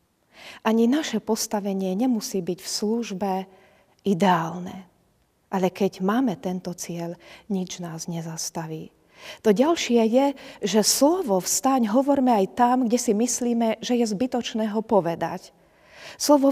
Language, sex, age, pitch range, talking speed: Slovak, female, 40-59, 180-225 Hz, 125 wpm